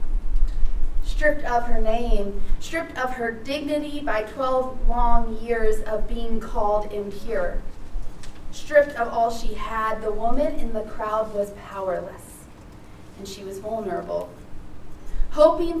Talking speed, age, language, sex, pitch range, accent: 125 wpm, 30-49, English, female, 210-255 Hz, American